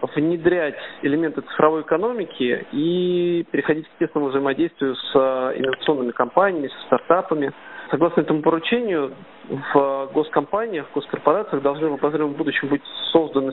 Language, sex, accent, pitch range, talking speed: Russian, male, native, 135-165 Hz, 115 wpm